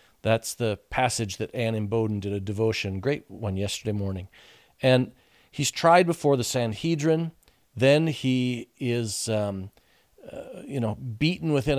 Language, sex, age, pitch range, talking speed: English, male, 40-59, 115-150 Hz, 145 wpm